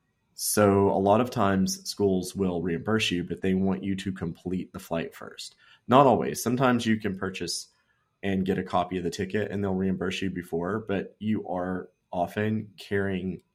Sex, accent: male, American